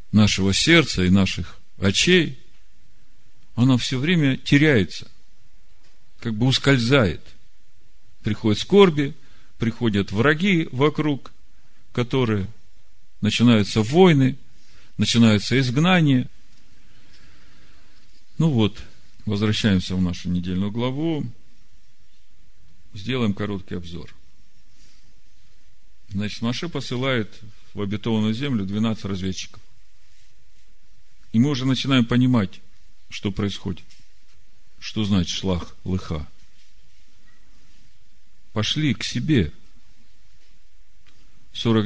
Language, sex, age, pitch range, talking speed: Russian, male, 50-69, 95-120 Hz, 80 wpm